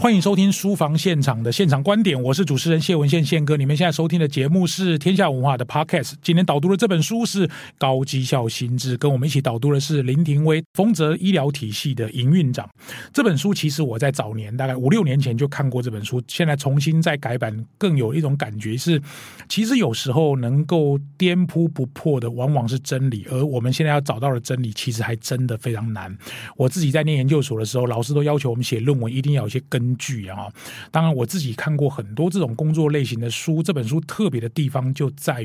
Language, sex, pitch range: Chinese, male, 125-165 Hz